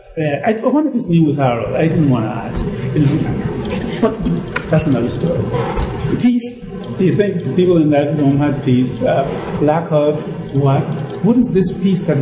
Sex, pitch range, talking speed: male, 140-175 Hz, 175 wpm